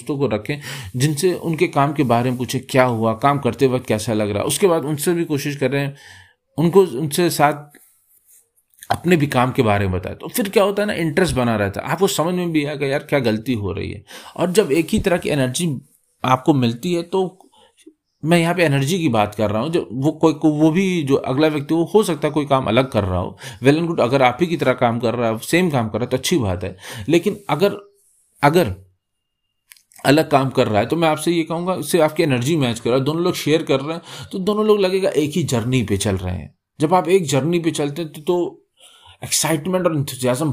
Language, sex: Hindi, male